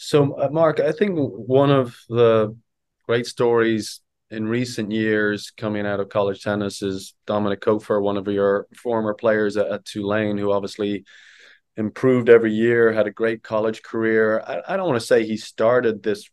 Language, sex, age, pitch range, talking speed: English, male, 20-39, 105-125 Hz, 175 wpm